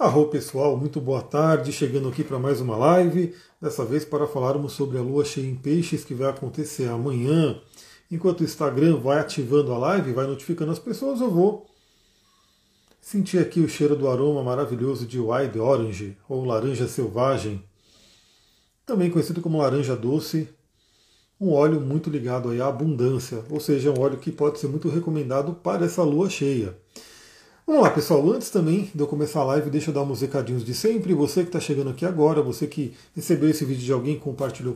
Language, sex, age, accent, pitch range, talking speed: Portuguese, male, 40-59, Brazilian, 135-170 Hz, 185 wpm